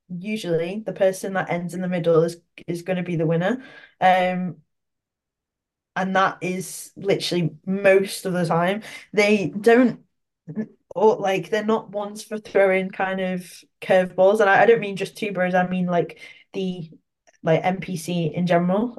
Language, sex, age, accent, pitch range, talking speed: English, female, 10-29, British, 170-210 Hz, 160 wpm